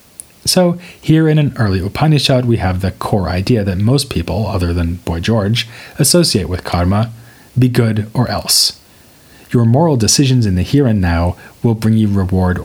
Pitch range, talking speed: 95-125 Hz, 175 wpm